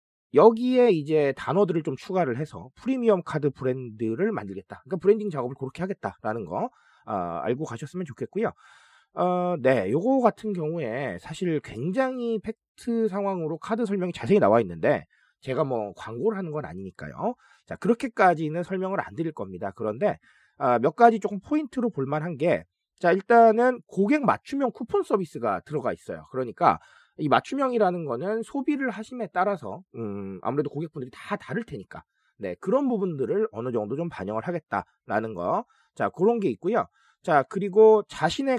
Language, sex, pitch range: Korean, male, 150-230 Hz